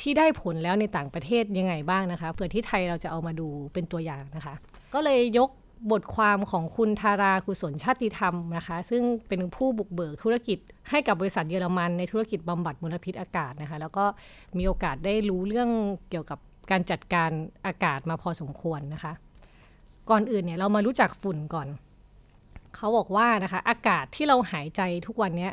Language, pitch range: Thai, 175-225 Hz